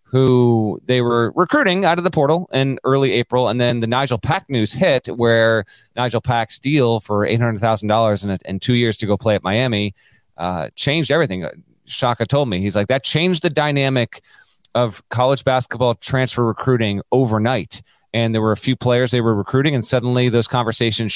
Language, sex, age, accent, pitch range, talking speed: English, male, 30-49, American, 115-145 Hz, 185 wpm